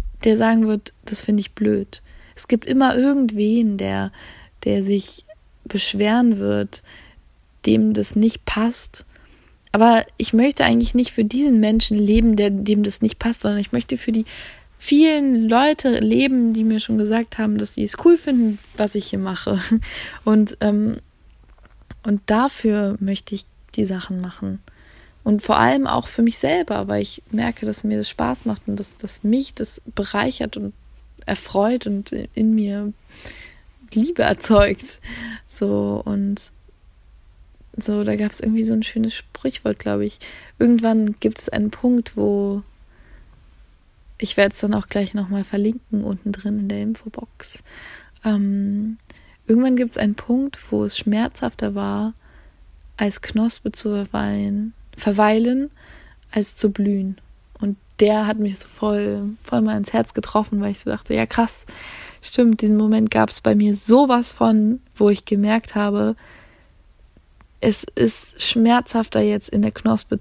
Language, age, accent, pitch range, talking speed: German, 20-39, German, 200-225 Hz, 155 wpm